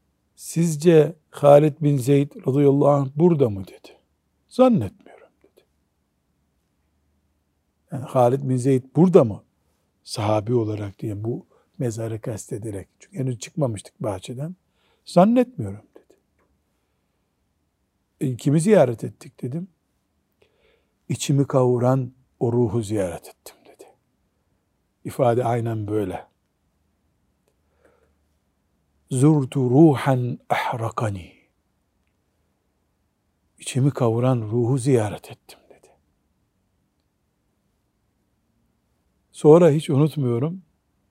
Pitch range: 95-150 Hz